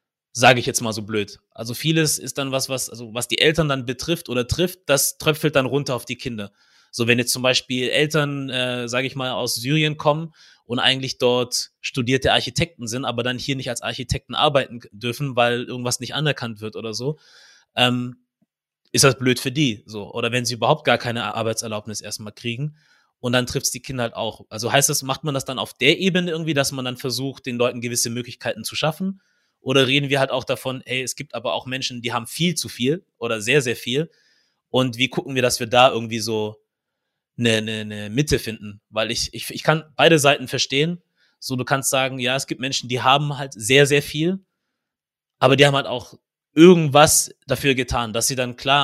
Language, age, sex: German, 20-39, male